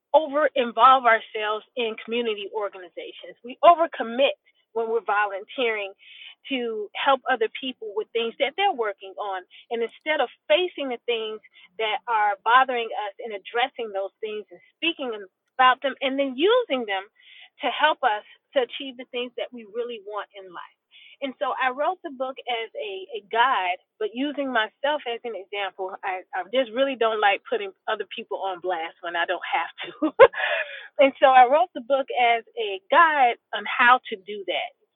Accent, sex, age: American, female, 30-49